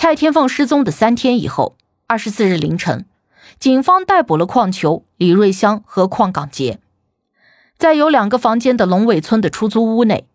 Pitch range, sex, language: 185-260 Hz, female, Chinese